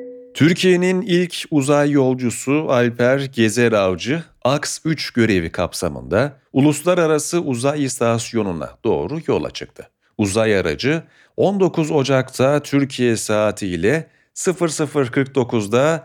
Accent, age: native, 40-59